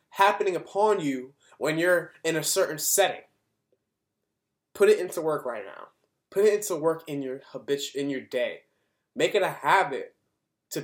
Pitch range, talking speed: 155-235 Hz, 165 wpm